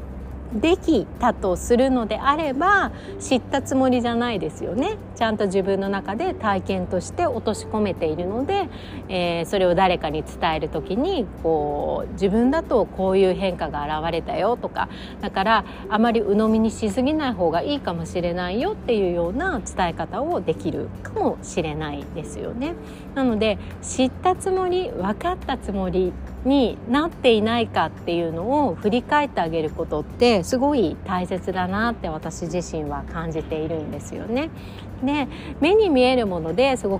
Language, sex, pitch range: Japanese, female, 170-255 Hz